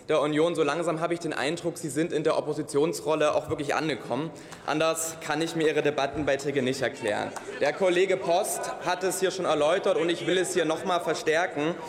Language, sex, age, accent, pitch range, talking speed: German, male, 20-39, German, 165-195 Hz, 200 wpm